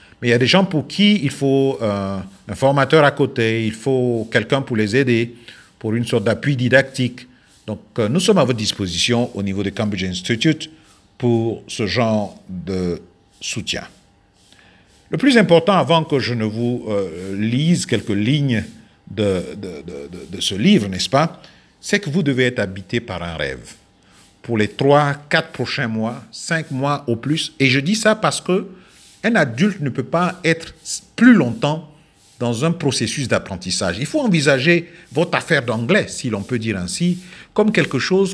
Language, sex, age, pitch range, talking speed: French, male, 50-69, 115-175 Hz, 180 wpm